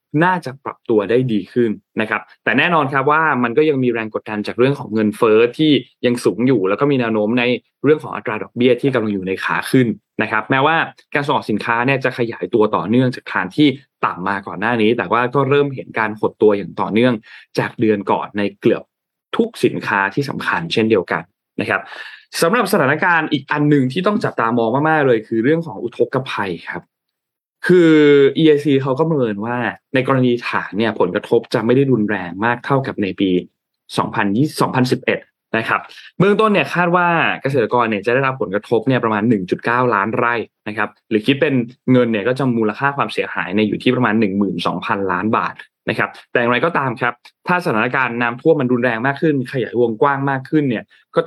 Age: 20-39